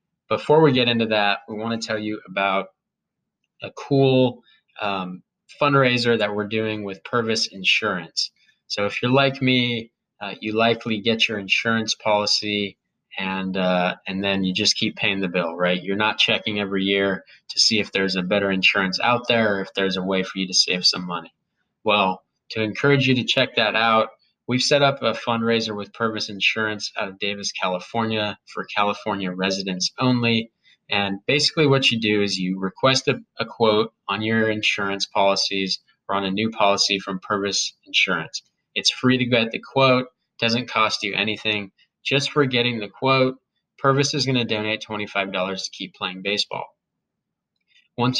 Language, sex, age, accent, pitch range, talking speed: English, male, 20-39, American, 100-120 Hz, 175 wpm